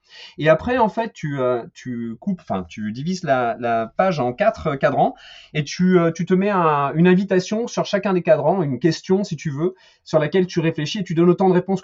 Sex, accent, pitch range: male, French, 125-180 Hz